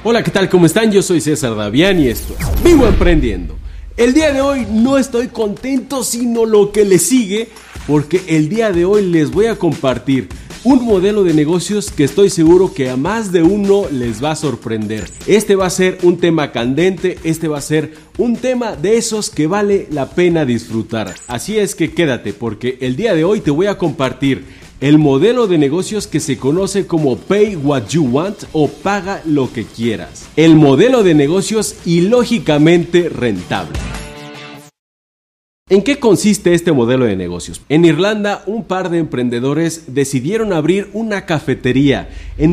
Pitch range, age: 135-200 Hz, 40-59